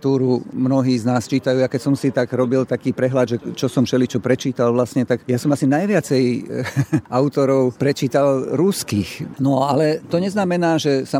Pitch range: 120-140 Hz